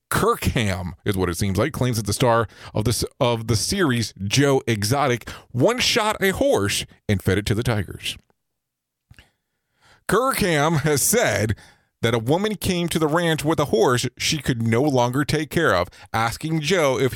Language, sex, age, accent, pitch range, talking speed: English, male, 30-49, American, 110-155 Hz, 175 wpm